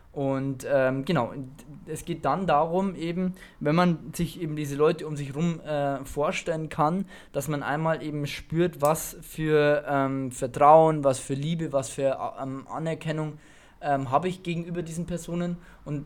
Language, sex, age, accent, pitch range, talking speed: German, male, 20-39, German, 140-165 Hz, 160 wpm